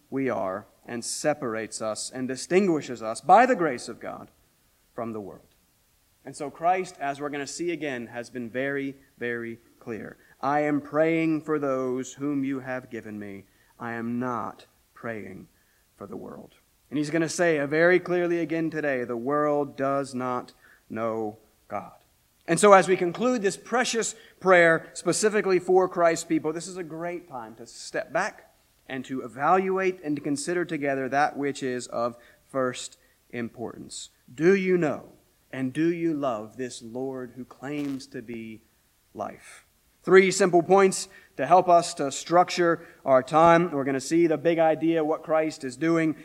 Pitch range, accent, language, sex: 130-170 Hz, American, English, male